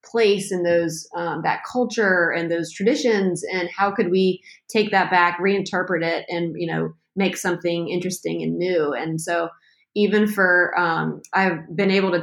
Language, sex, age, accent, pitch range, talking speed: English, female, 20-39, American, 170-195 Hz, 170 wpm